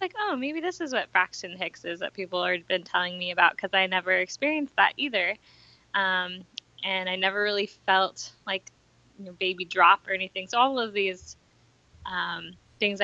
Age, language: 10-29, English